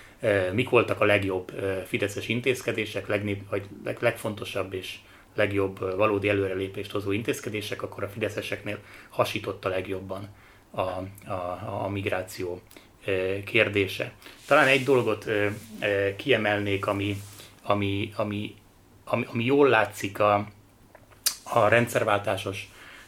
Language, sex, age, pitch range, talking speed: Hungarian, male, 30-49, 100-115 Hz, 95 wpm